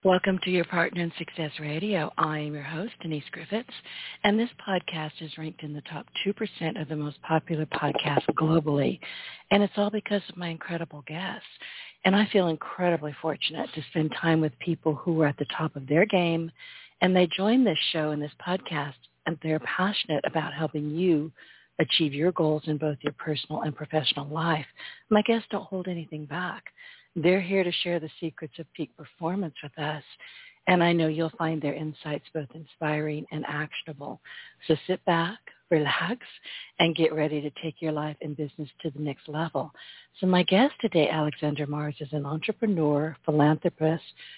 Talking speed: 180 wpm